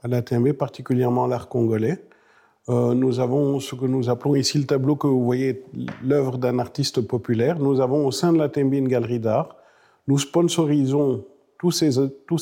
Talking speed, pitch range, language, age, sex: 175 wpm, 120-140 Hz, French, 50-69, male